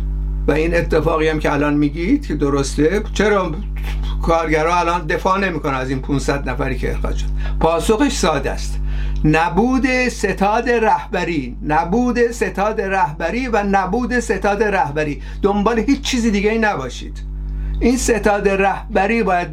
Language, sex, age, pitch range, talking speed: Persian, male, 60-79, 170-220 Hz, 135 wpm